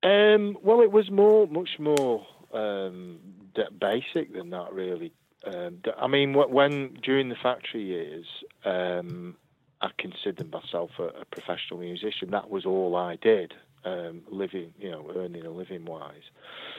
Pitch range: 90-120 Hz